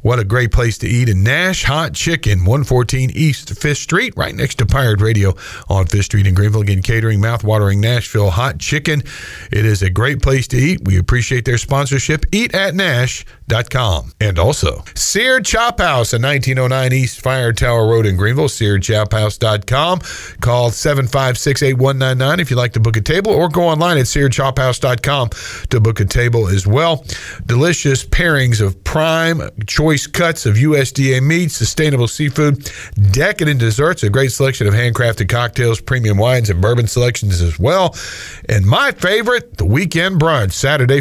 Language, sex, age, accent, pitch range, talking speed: English, male, 40-59, American, 110-150 Hz, 160 wpm